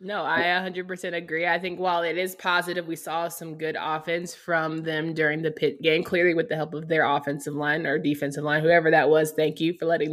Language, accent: English, American